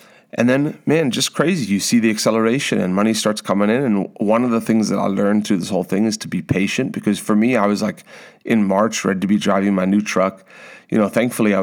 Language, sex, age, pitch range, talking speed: English, male, 30-49, 100-115 Hz, 255 wpm